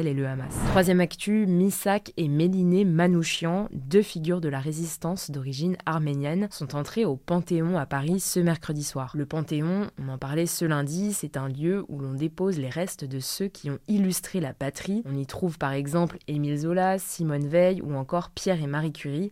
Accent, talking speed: French, 195 wpm